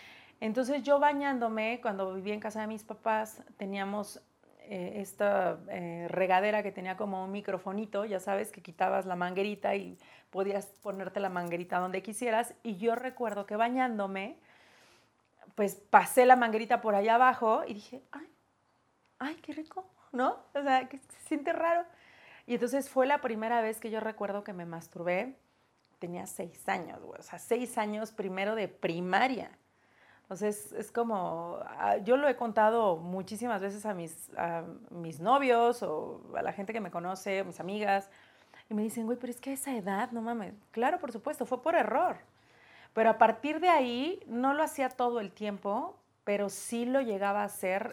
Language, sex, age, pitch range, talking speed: Spanish, female, 40-59, 195-250 Hz, 175 wpm